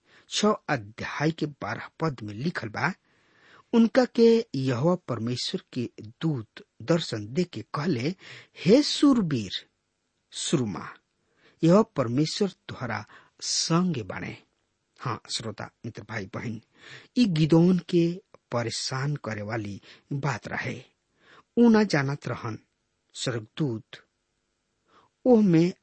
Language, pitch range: English, 115-185 Hz